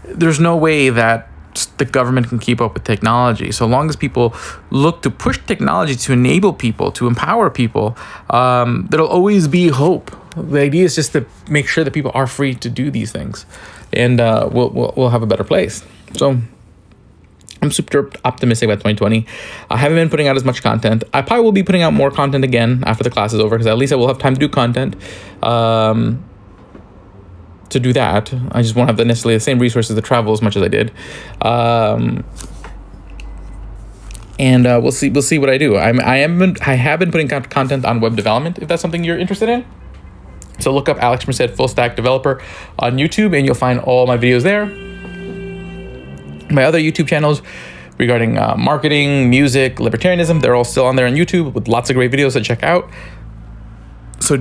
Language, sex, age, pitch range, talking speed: English, male, 20-39, 115-150 Hz, 195 wpm